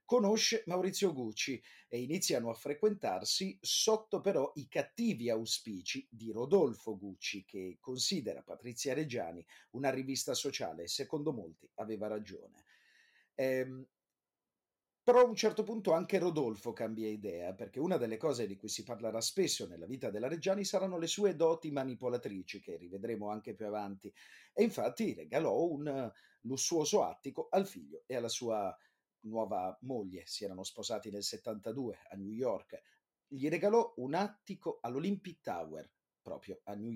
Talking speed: 145 wpm